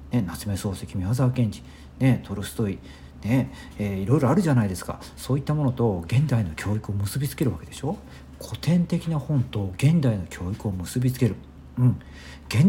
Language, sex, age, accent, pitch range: Japanese, male, 50-69, native, 105-175 Hz